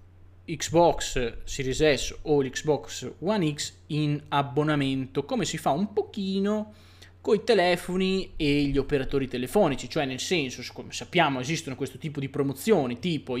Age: 20-39